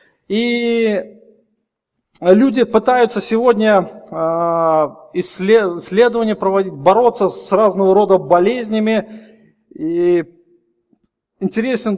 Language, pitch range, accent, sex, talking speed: Russian, 185-230 Hz, native, male, 65 wpm